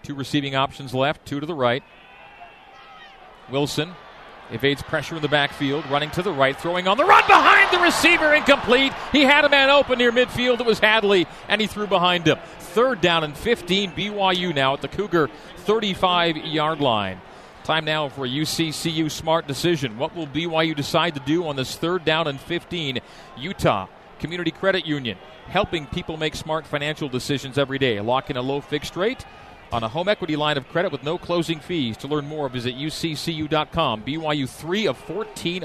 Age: 40-59